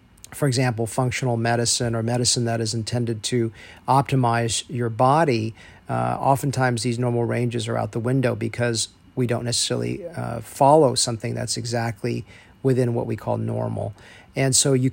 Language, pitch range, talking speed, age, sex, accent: English, 115-130 Hz, 155 wpm, 40-59, male, American